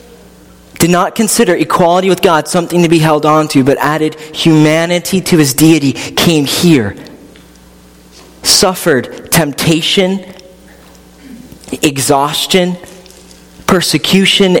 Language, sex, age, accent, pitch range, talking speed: English, male, 40-59, American, 145-190 Hz, 100 wpm